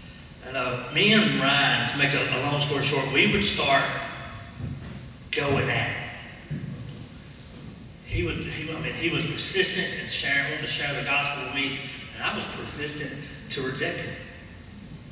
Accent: American